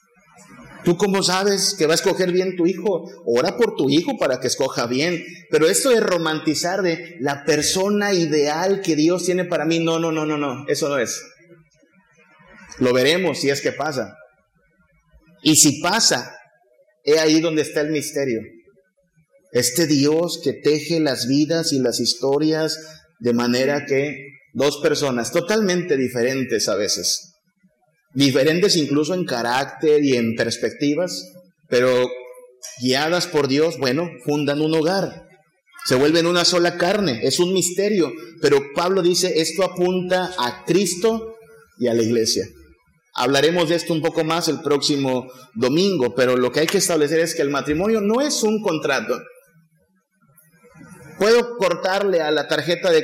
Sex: male